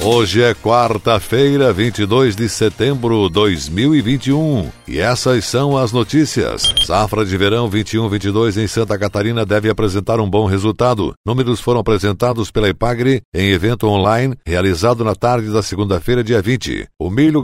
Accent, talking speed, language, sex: Brazilian, 145 wpm, Portuguese, male